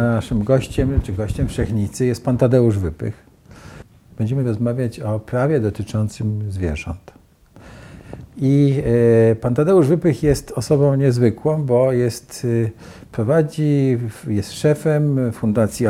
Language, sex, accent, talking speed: Polish, male, native, 105 wpm